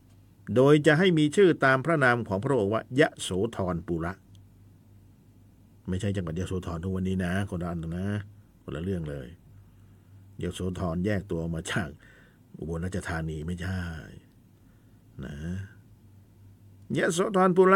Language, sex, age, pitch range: Thai, male, 60-79, 95-135 Hz